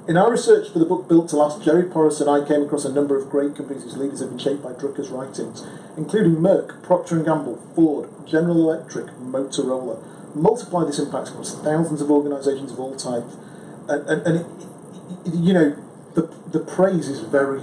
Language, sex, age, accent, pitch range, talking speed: English, male, 40-59, British, 140-170 Hz, 200 wpm